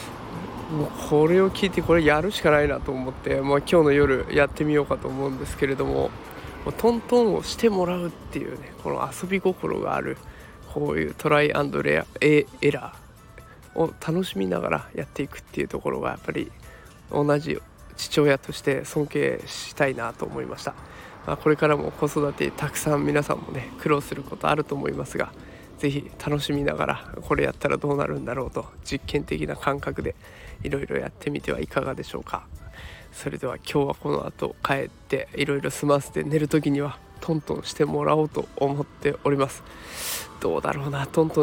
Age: 20-39